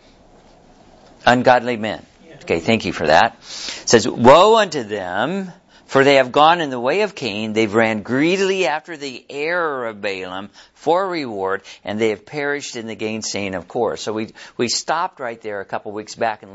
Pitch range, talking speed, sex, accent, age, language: 105-140 Hz, 190 wpm, male, American, 50-69, English